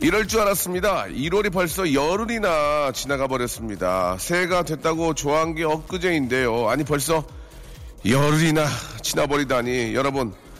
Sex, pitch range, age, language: male, 145-215 Hz, 40-59, Korean